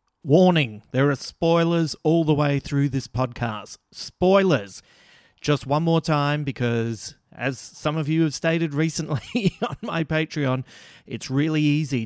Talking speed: 145 wpm